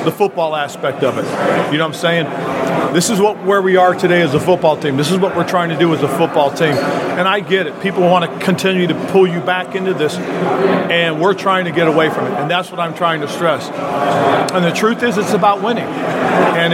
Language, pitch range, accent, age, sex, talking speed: English, 160-190 Hz, American, 50-69, male, 245 wpm